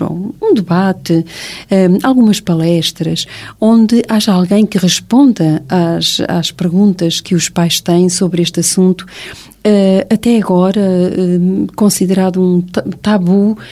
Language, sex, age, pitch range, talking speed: Portuguese, female, 40-59, 175-200 Hz, 105 wpm